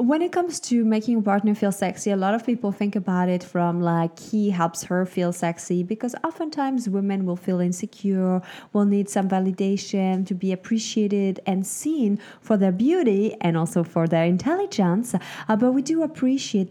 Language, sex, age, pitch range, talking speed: English, female, 20-39, 195-250 Hz, 185 wpm